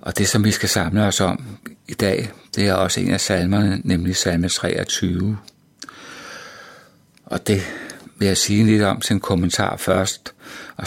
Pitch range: 90-100 Hz